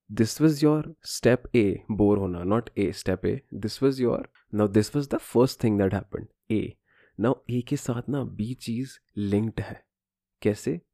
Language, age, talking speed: Hindi, 20-39, 175 wpm